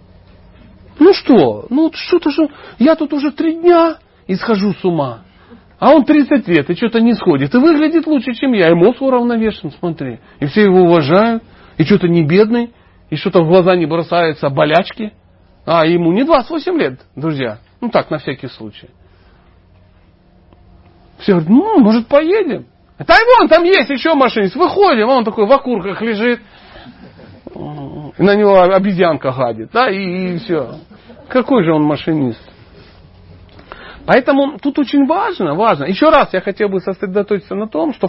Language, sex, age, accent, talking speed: Russian, male, 40-59, native, 155 wpm